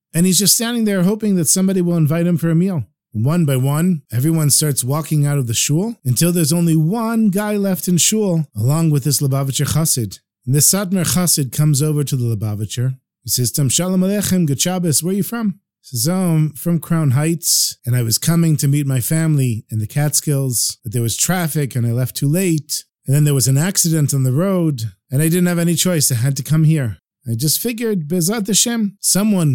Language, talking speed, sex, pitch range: English, 220 wpm, male, 130-180 Hz